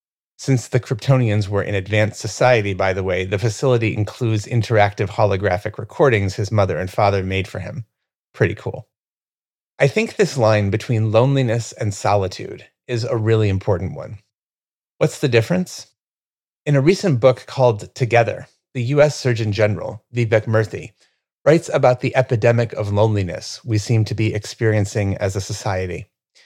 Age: 30-49